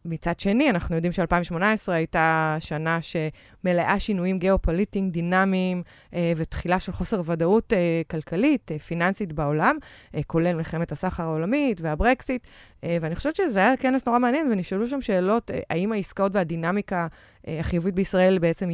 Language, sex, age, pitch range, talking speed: Hebrew, female, 20-39, 165-200 Hz, 125 wpm